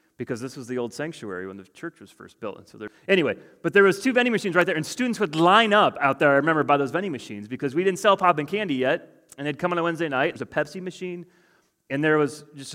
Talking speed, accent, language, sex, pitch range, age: 285 wpm, American, English, male, 140-200 Hz, 30-49